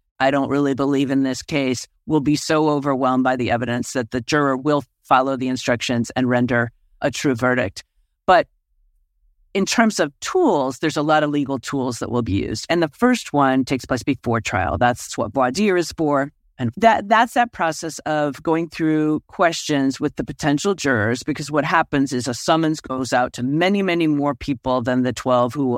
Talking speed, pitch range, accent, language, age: 200 wpm, 125-155 Hz, American, English, 50-69